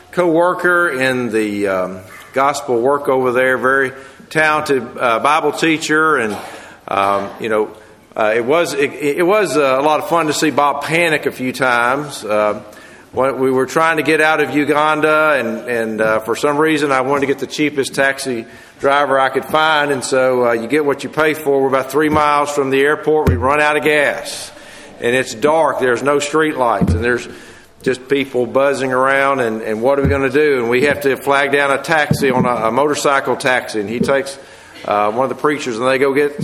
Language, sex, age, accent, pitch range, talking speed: English, male, 50-69, American, 130-155 Hz, 210 wpm